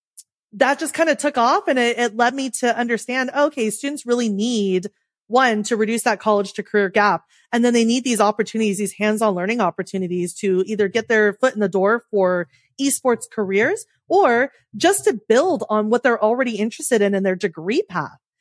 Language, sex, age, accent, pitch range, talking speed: English, female, 30-49, American, 205-255 Hz, 195 wpm